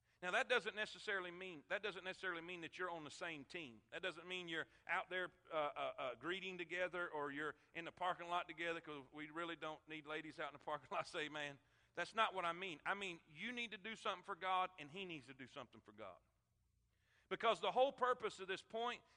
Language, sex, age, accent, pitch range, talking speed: English, male, 40-59, American, 170-225 Hz, 240 wpm